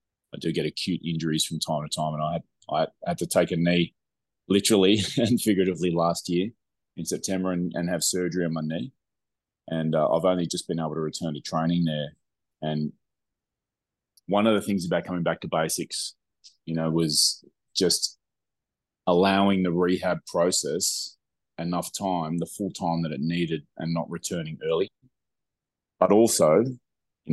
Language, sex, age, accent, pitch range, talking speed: English, male, 20-39, Australian, 80-90 Hz, 165 wpm